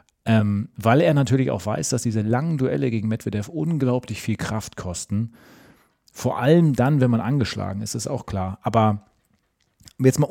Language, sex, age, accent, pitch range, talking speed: German, male, 40-59, German, 105-125 Hz, 170 wpm